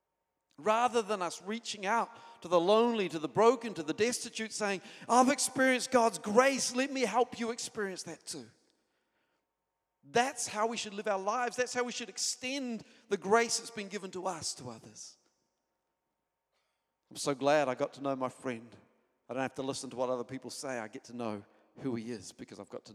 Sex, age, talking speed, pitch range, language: male, 40-59, 200 wpm, 130-210 Hz, English